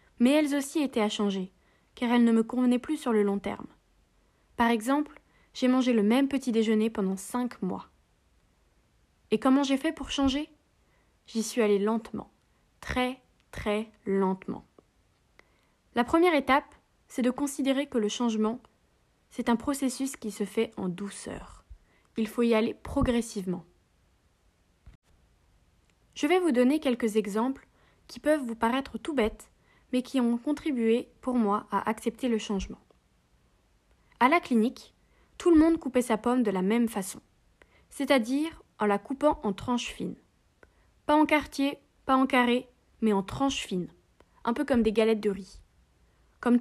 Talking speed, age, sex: 155 wpm, 20-39, female